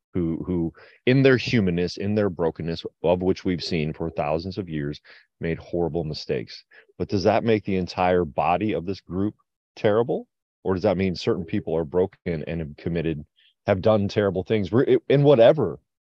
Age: 30-49